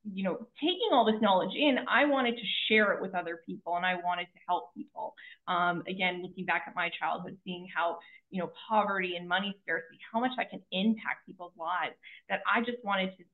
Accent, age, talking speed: American, 20-39, 215 wpm